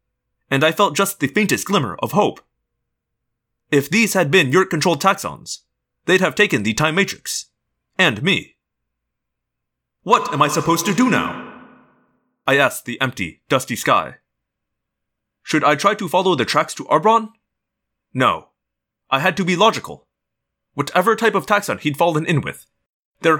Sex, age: male, 30-49